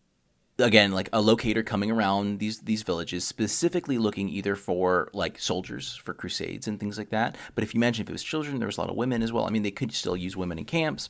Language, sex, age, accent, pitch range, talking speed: English, male, 30-49, American, 90-110 Hz, 250 wpm